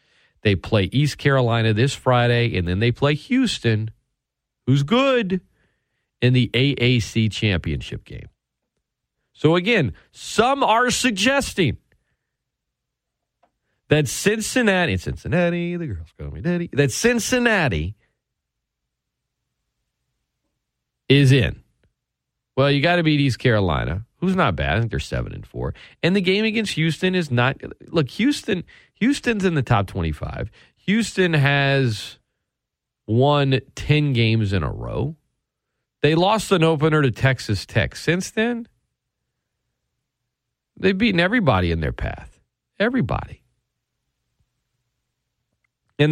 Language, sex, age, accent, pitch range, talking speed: English, male, 40-59, American, 110-175 Hz, 115 wpm